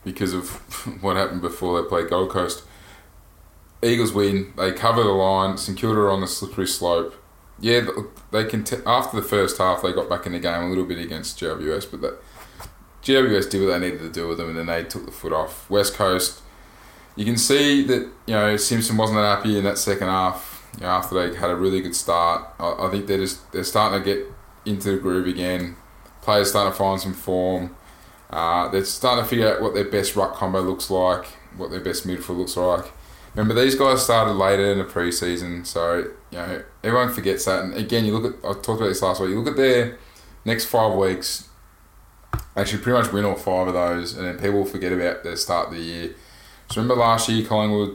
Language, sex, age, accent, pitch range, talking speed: English, male, 20-39, Australian, 90-110 Hz, 220 wpm